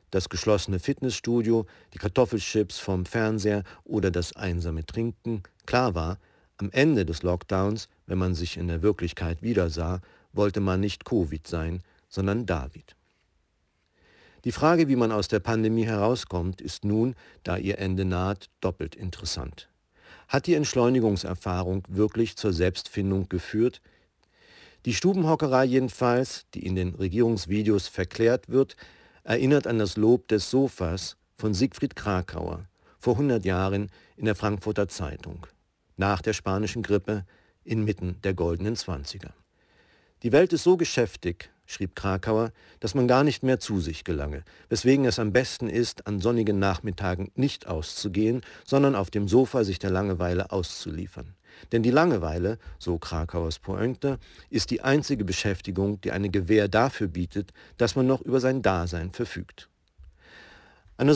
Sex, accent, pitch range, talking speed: male, German, 90-115 Hz, 140 wpm